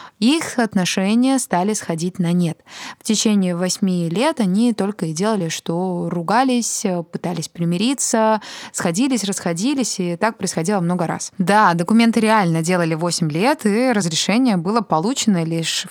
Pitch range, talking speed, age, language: 180-235 Hz, 135 wpm, 20-39, Russian